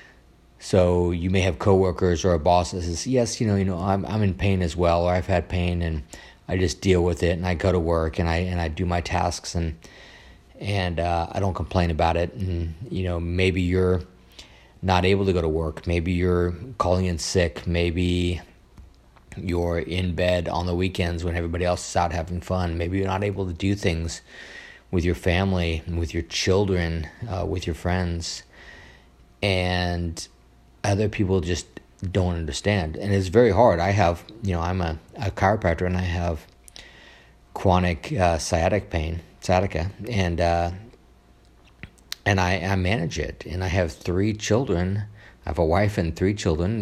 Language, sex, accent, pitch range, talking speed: English, male, American, 85-95 Hz, 185 wpm